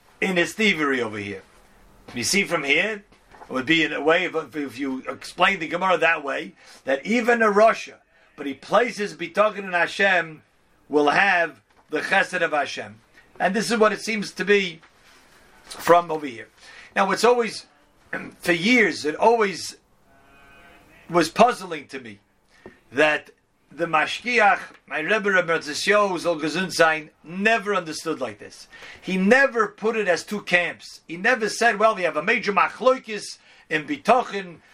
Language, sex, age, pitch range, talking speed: English, male, 40-59, 160-215 Hz, 155 wpm